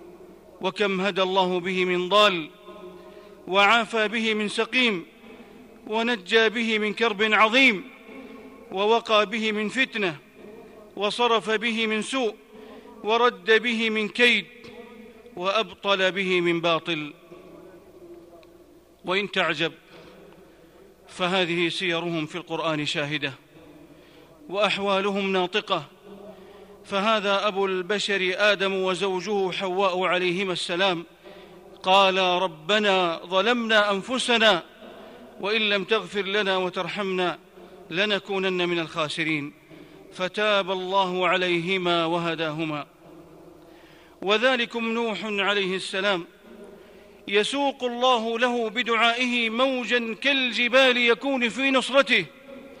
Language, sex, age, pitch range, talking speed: Arabic, male, 40-59, 180-225 Hz, 85 wpm